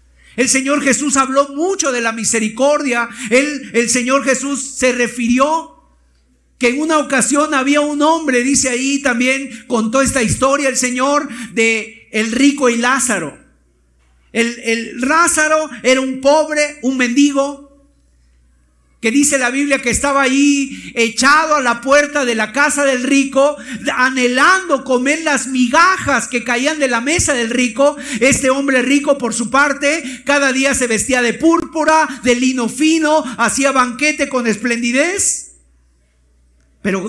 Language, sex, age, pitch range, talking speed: Spanish, male, 50-69, 195-280 Hz, 145 wpm